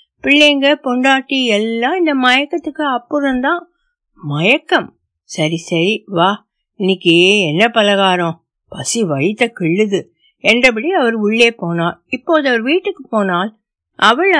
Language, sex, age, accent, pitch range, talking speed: Tamil, female, 60-79, native, 185-275 Hz, 45 wpm